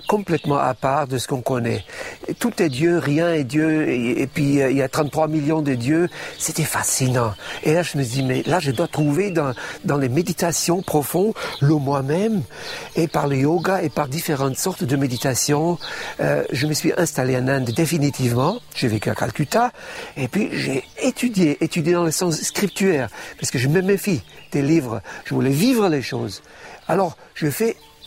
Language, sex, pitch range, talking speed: French, male, 145-190 Hz, 190 wpm